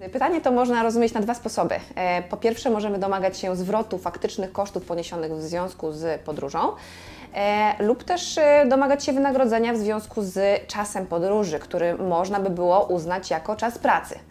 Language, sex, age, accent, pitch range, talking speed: Polish, female, 20-39, native, 180-235 Hz, 160 wpm